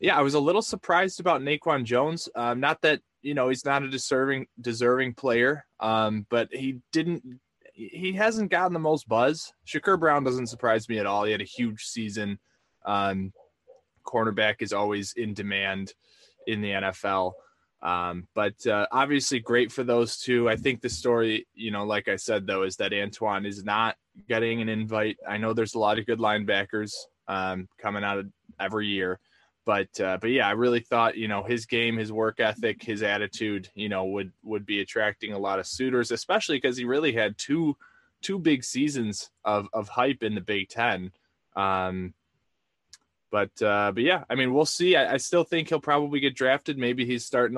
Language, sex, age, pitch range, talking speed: English, male, 20-39, 100-130 Hz, 195 wpm